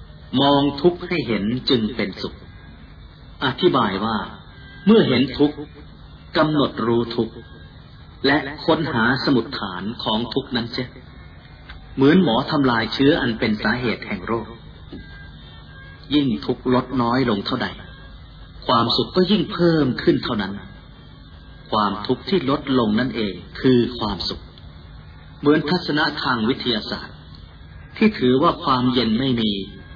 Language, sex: Thai, male